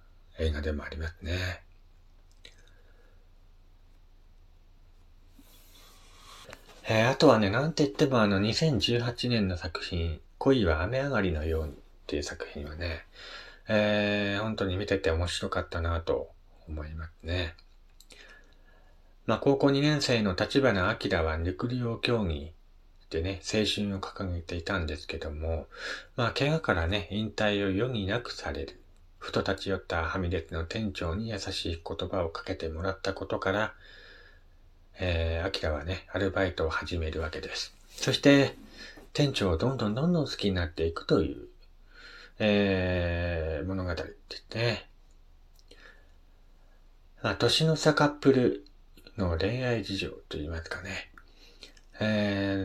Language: Japanese